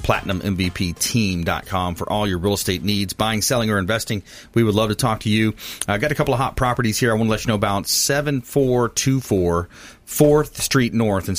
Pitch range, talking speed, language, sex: 95-120 Hz, 200 wpm, English, male